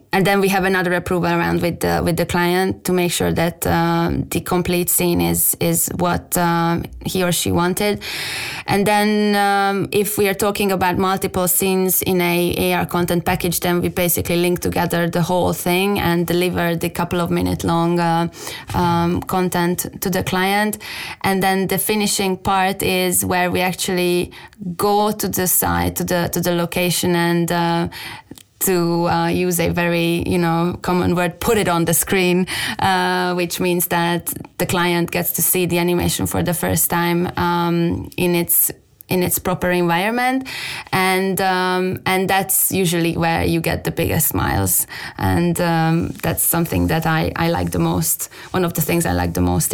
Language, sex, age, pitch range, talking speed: English, female, 20-39, 170-185 Hz, 180 wpm